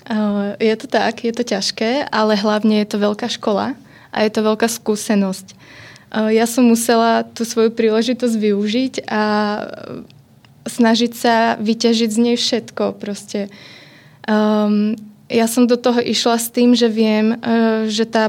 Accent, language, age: native, Czech, 20-39